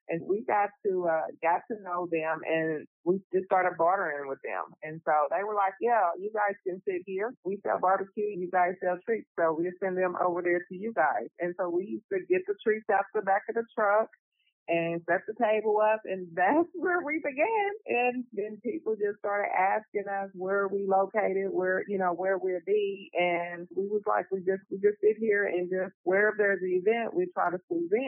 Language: English